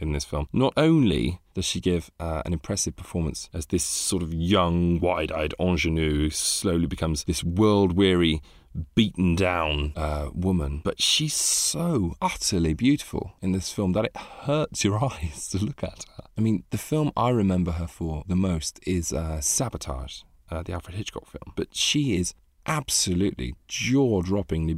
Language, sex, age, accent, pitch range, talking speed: English, male, 30-49, British, 80-110 Hz, 165 wpm